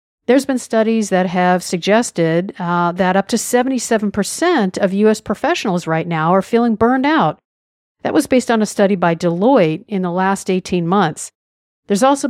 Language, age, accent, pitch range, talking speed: English, 50-69, American, 180-245 Hz, 170 wpm